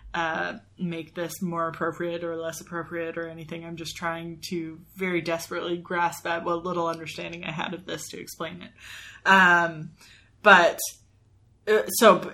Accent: American